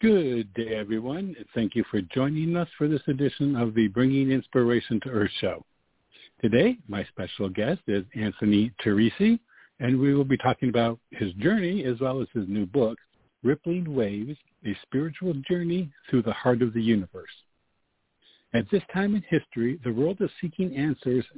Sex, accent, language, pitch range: male, American, English, 110-150 Hz